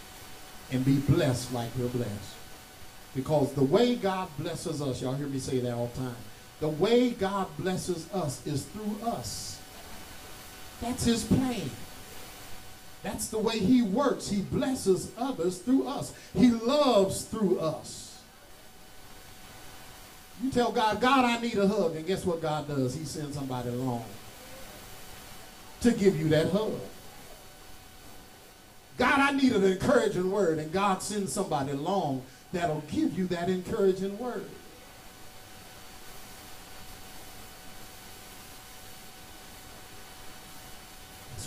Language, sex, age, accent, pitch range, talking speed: English, male, 50-69, American, 120-195 Hz, 125 wpm